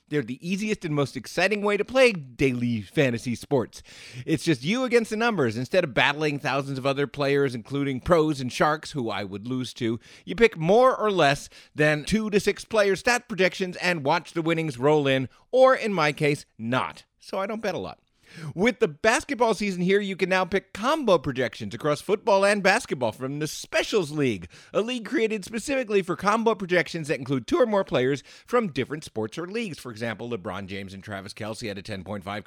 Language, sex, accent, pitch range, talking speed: English, male, American, 135-205 Hz, 205 wpm